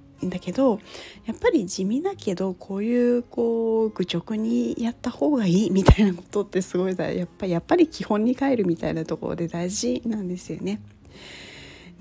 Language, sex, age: Japanese, female, 40-59